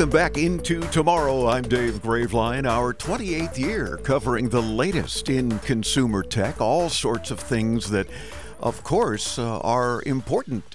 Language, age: English, 50-69